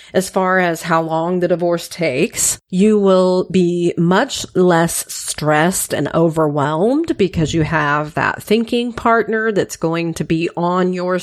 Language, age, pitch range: English, 40-59, 165-215 Hz